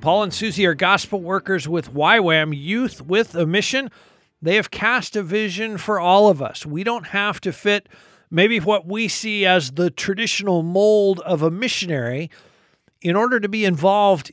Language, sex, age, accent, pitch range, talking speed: English, male, 50-69, American, 160-205 Hz, 175 wpm